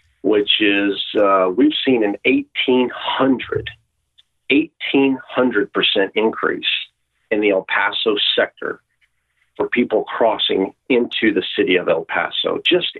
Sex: male